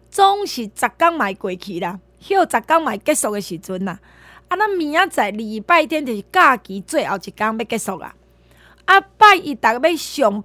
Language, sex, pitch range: Chinese, female, 220-325 Hz